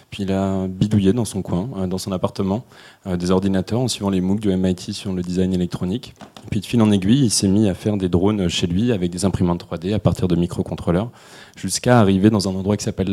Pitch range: 90-105 Hz